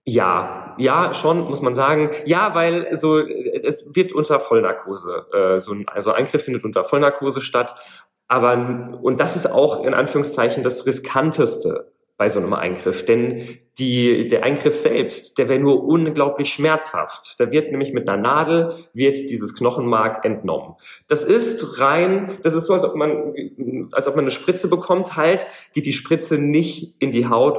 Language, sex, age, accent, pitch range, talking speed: German, male, 40-59, German, 120-155 Hz, 170 wpm